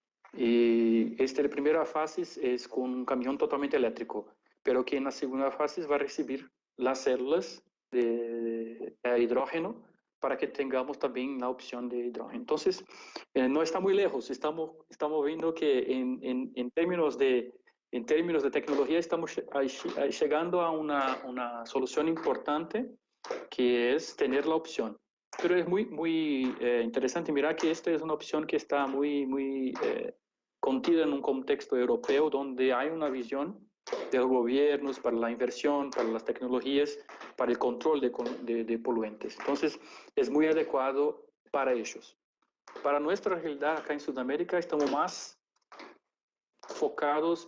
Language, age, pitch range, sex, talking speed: Spanish, 40-59, 125-160 Hz, male, 150 wpm